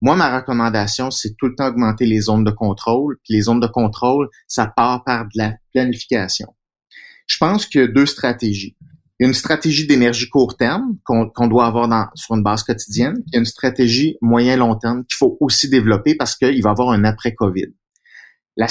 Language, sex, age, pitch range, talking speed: French, male, 30-49, 110-130 Hz, 195 wpm